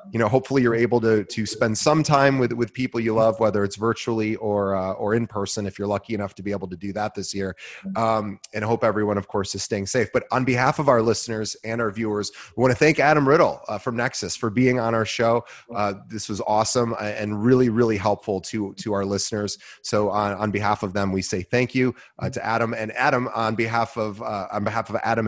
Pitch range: 105-125 Hz